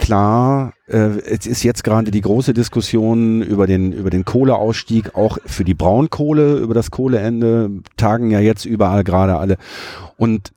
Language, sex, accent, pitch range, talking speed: German, male, German, 100-140 Hz, 150 wpm